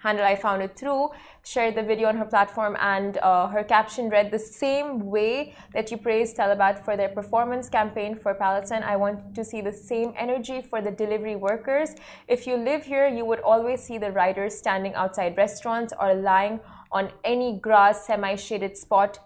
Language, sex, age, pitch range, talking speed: Arabic, female, 20-39, 200-230 Hz, 185 wpm